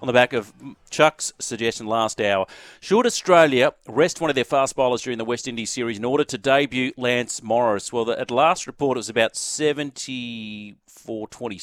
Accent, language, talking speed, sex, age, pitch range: Australian, English, 190 wpm, male, 40-59, 105-140 Hz